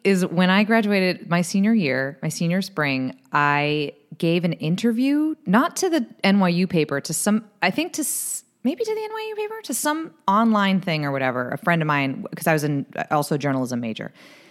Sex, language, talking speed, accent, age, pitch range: female, English, 195 wpm, American, 30-49, 140-195 Hz